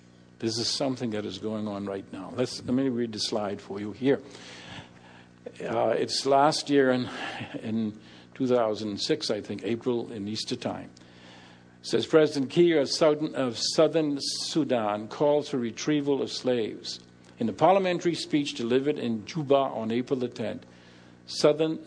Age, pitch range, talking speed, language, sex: 50-69, 100-140 Hz, 150 wpm, English, male